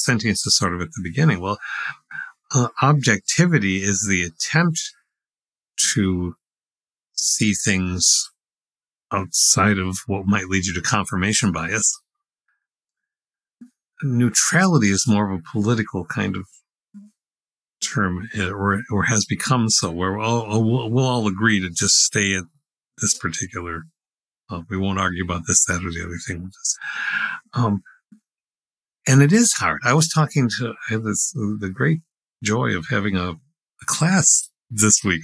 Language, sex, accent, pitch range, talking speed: English, male, American, 95-130 Hz, 145 wpm